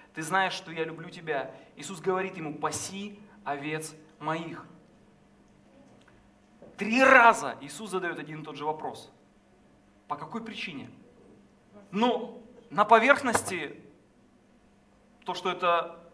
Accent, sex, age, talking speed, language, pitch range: native, male, 30-49, 110 wpm, Russian, 170-240 Hz